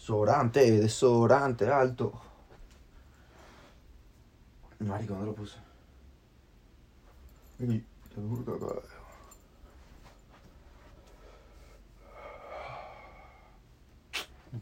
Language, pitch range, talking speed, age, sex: Spanish, 90-125 Hz, 50 wpm, 30-49, male